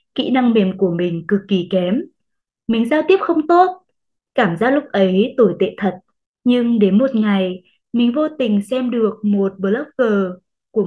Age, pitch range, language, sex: 20-39, 200-275 Hz, Vietnamese, female